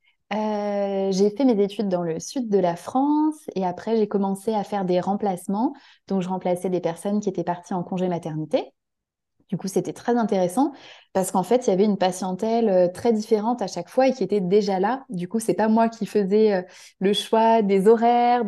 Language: French